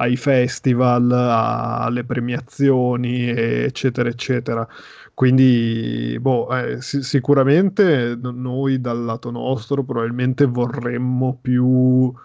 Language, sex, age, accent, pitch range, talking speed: Italian, male, 20-39, native, 120-135 Hz, 85 wpm